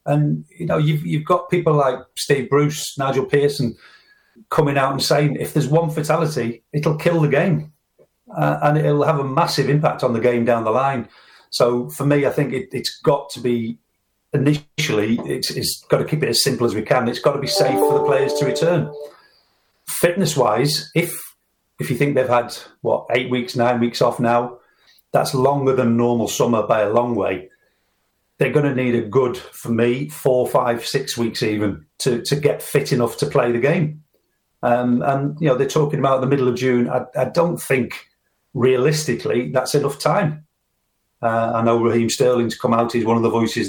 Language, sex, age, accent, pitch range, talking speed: English, male, 40-59, British, 120-150 Hz, 200 wpm